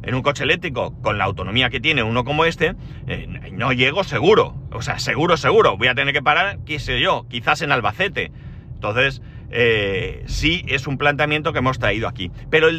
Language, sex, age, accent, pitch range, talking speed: Spanish, male, 40-59, Spanish, 120-155 Hz, 200 wpm